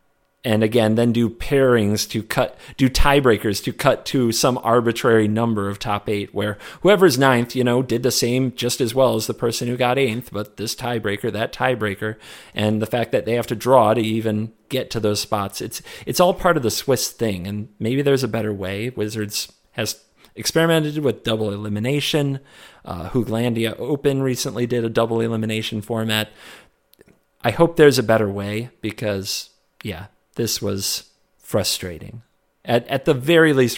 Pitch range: 110-135 Hz